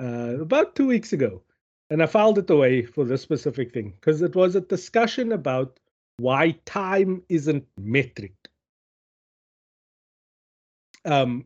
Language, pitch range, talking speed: English, 120-160 Hz, 130 wpm